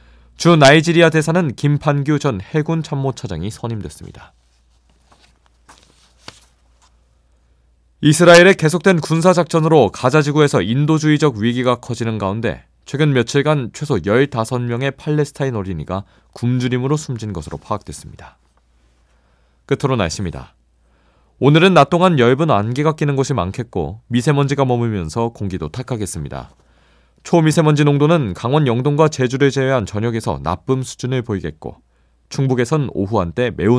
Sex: male